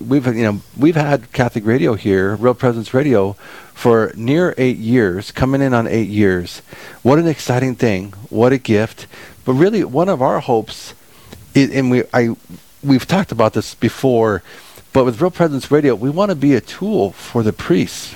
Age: 40-59